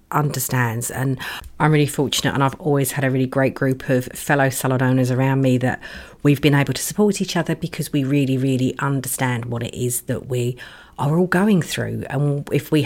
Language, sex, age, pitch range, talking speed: English, female, 40-59, 130-150 Hz, 205 wpm